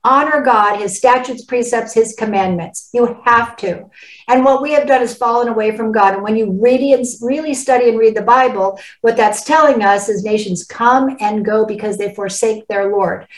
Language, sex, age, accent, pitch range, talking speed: English, female, 50-69, American, 215-270 Hz, 195 wpm